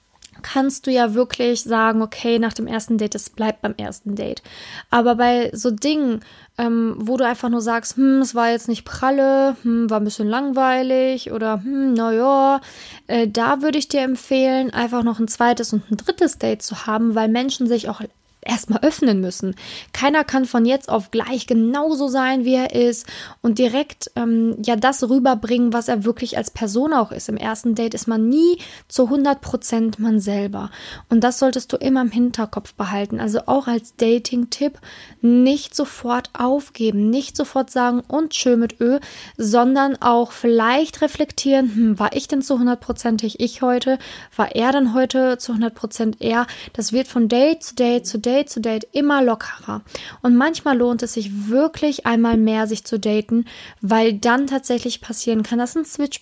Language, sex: German, female